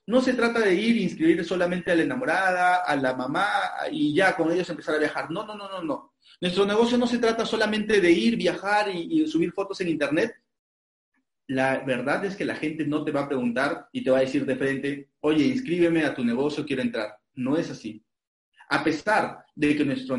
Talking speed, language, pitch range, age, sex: 220 wpm, Spanish, 150-215 Hz, 40-59, male